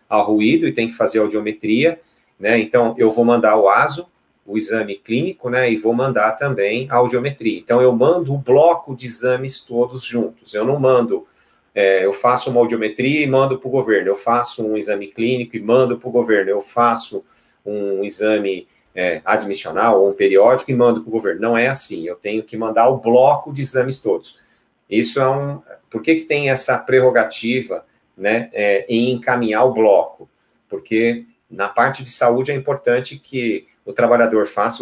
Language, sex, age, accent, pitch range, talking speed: Portuguese, male, 40-59, Brazilian, 110-130 Hz, 185 wpm